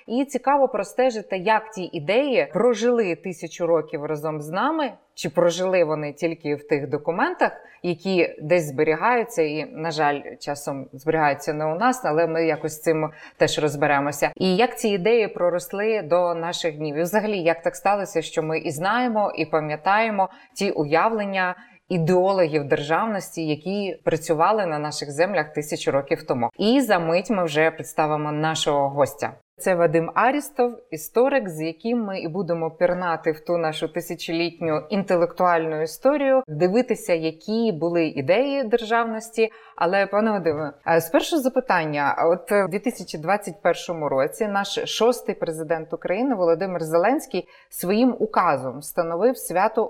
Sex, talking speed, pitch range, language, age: female, 140 wpm, 160-215 Hz, Ukrainian, 20-39